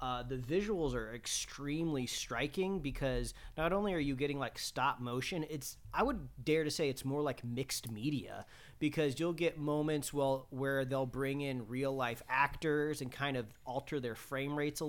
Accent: American